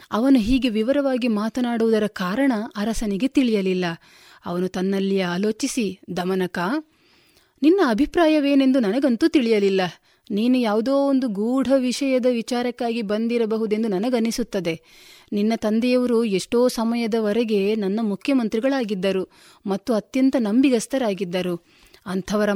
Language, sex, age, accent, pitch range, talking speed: Kannada, female, 30-49, native, 205-250 Hz, 90 wpm